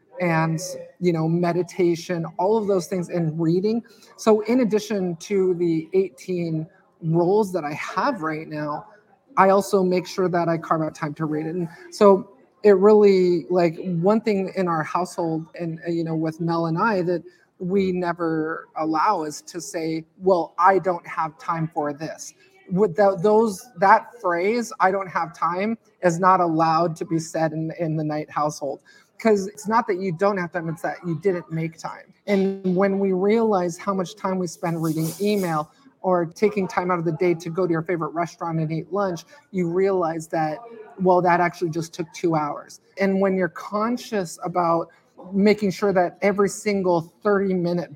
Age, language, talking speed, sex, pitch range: 30-49, English, 185 wpm, male, 165-195 Hz